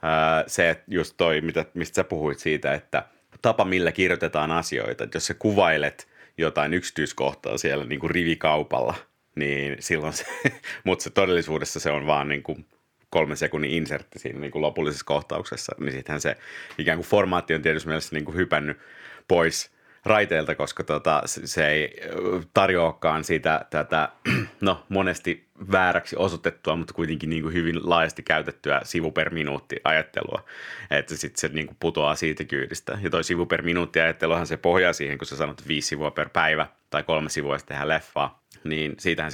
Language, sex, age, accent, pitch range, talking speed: Finnish, male, 30-49, native, 75-85 Hz, 160 wpm